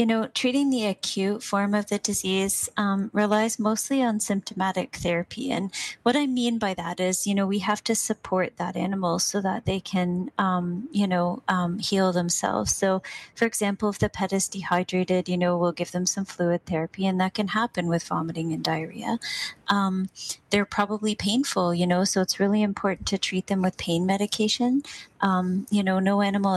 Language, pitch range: English, 175-205 Hz